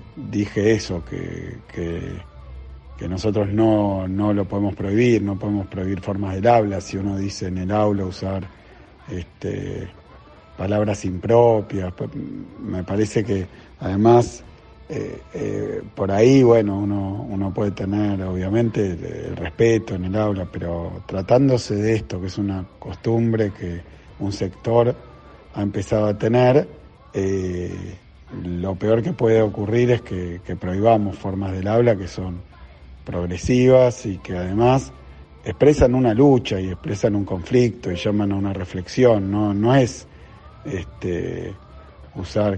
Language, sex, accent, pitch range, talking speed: Spanish, male, Argentinian, 95-115 Hz, 140 wpm